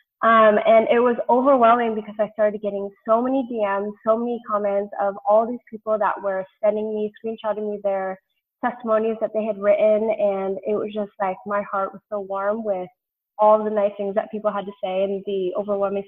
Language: English